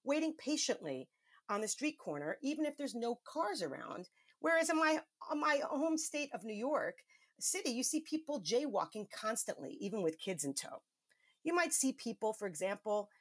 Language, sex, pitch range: English, female, 185-305 Hz